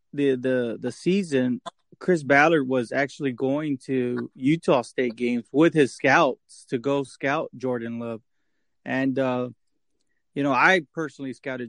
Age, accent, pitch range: 30-49, American, 130-150 Hz